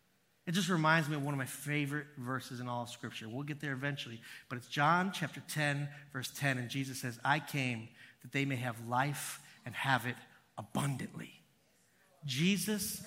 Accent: American